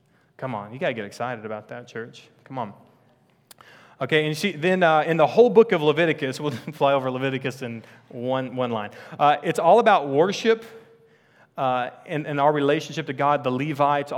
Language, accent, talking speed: English, American, 195 wpm